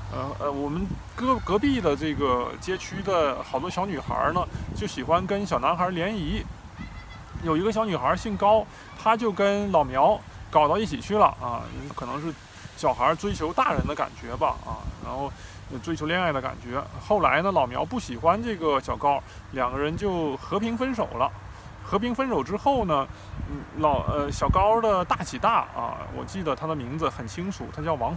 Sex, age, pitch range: male, 20-39, 130-205 Hz